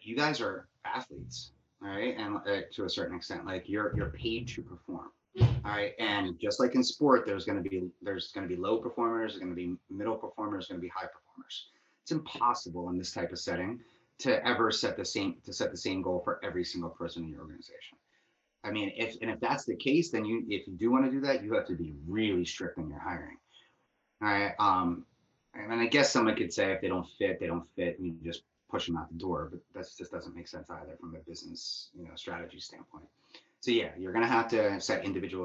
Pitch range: 85-115 Hz